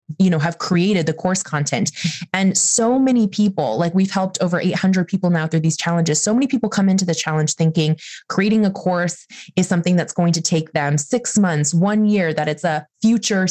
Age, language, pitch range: 20-39, English, 160-190 Hz